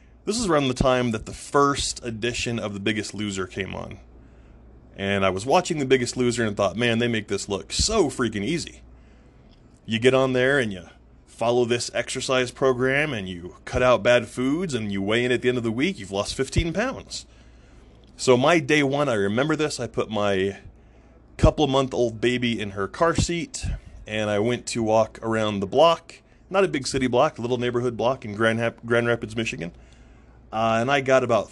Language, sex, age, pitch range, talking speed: English, male, 20-39, 100-125 Hz, 205 wpm